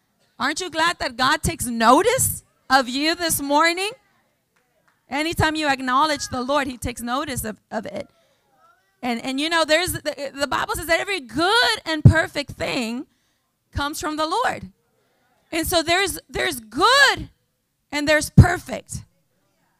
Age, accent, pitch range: 30-49, American, 230-315 Hz